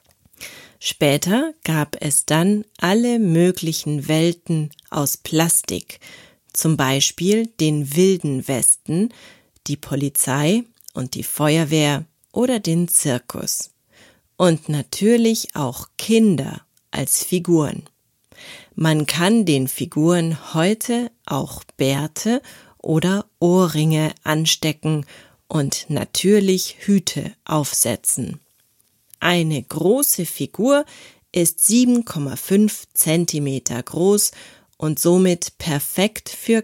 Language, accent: German, German